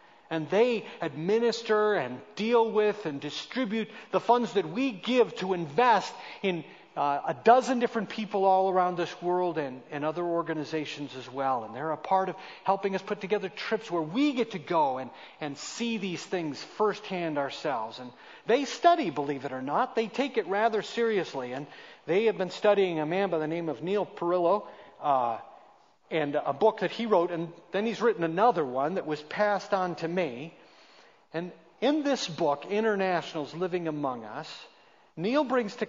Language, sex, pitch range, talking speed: English, male, 155-210 Hz, 180 wpm